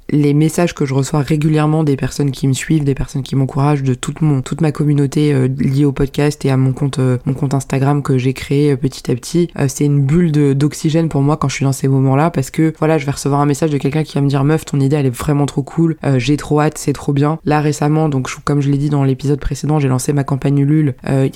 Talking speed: 285 wpm